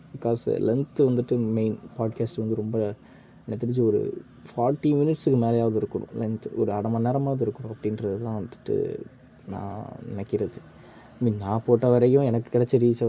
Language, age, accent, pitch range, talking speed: Tamil, 20-39, native, 110-130 Hz, 145 wpm